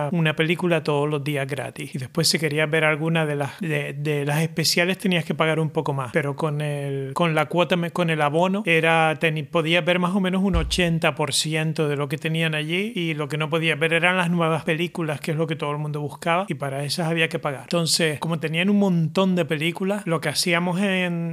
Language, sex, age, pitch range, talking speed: Spanish, male, 30-49, 155-175 Hz, 230 wpm